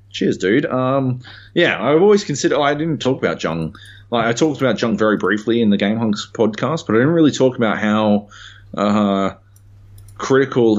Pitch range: 85-110 Hz